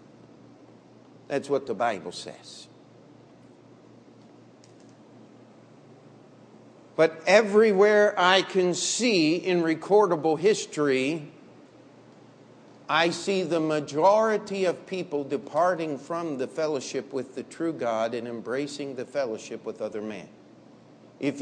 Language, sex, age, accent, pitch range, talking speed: English, male, 50-69, American, 185-275 Hz, 100 wpm